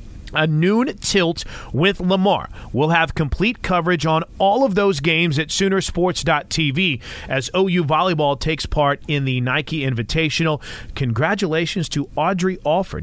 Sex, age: male, 40-59